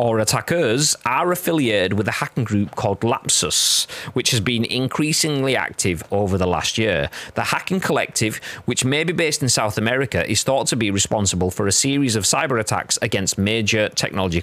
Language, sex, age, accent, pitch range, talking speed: English, male, 30-49, British, 105-140 Hz, 180 wpm